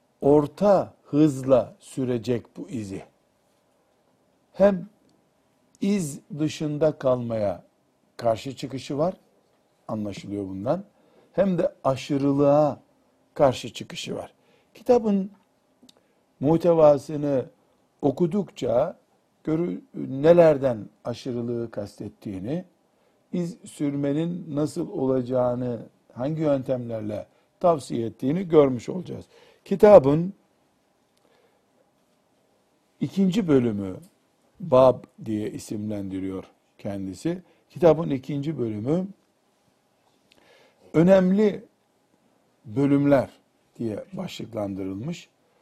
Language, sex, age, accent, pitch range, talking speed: Turkish, male, 60-79, native, 115-165 Hz, 65 wpm